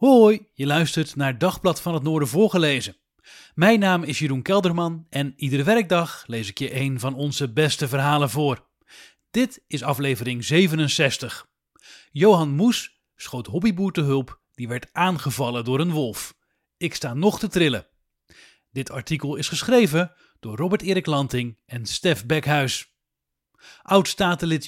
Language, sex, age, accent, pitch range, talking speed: English, male, 40-59, Dutch, 140-185 Hz, 145 wpm